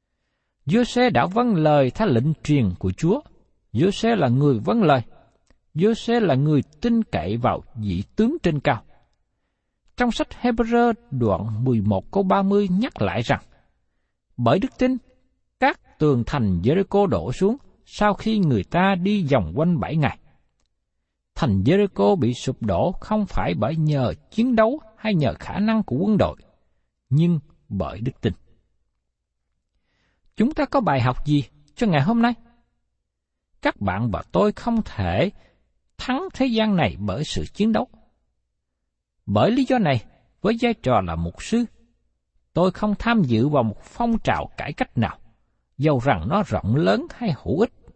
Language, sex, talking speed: Vietnamese, male, 160 wpm